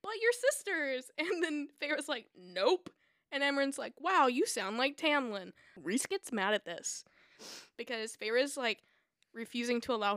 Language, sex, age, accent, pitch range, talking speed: English, female, 10-29, American, 210-290 Hz, 165 wpm